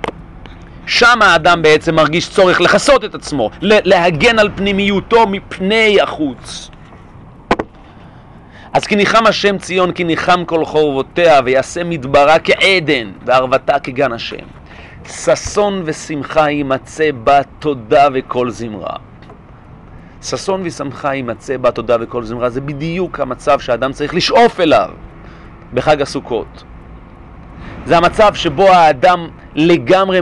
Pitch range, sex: 140-200 Hz, male